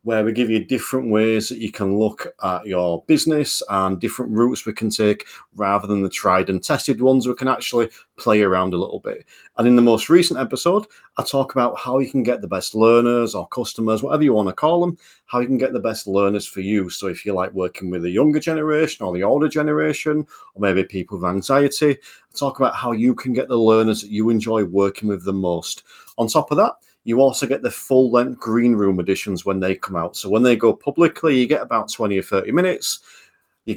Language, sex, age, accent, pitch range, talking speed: English, male, 40-59, British, 100-135 Hz, 230 wpm